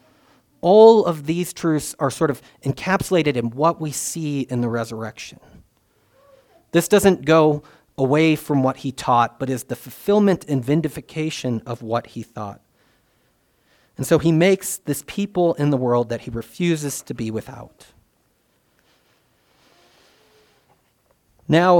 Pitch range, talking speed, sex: 125-160 Hz, 135 wpm, male